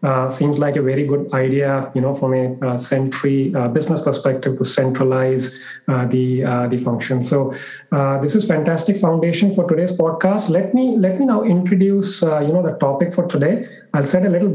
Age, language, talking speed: 30-49, English, 200 wpm